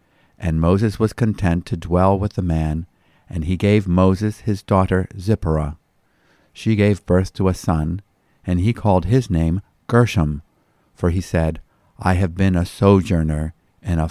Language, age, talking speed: English, 50-69, 160 wpm